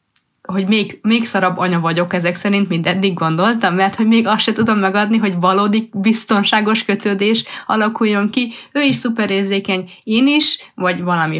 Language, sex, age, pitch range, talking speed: Hungarian, female, 30-49, 175-215 Hz, 170 wpm